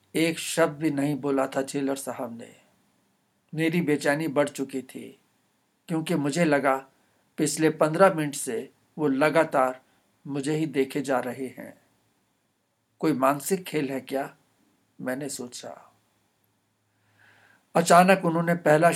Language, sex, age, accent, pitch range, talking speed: Hindi, male, 60-79, native, 135-160 Hz, 125 wpm